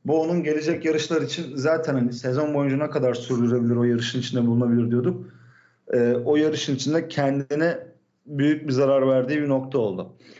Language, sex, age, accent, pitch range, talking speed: Turkish, male, 40-59, native, 130-170 Hz, 165 wpm